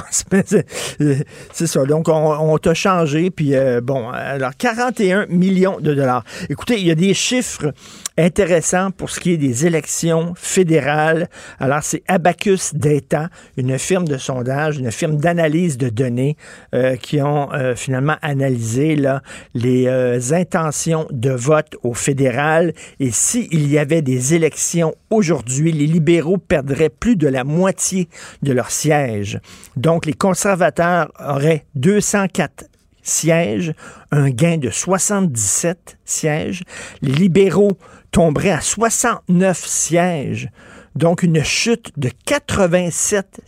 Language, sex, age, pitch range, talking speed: French, male, 50-69, 135-180 Hz, 135 wpm